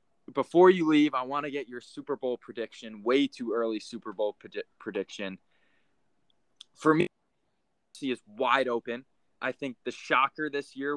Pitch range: 115-150 Hz